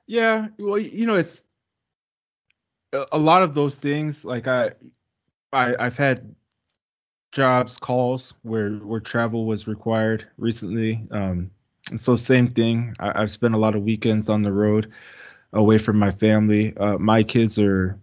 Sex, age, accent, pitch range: male, 20-39, American, 105-125 Hz